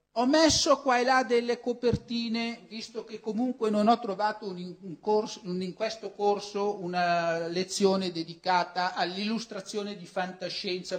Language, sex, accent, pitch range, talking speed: Italian, male, native, 160-220 Hz, 140 wpm